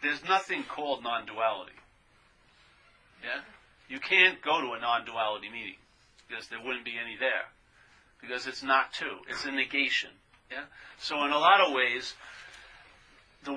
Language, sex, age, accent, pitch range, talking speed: English, male, 50-69, American, 130-155 Hz, 145 wpm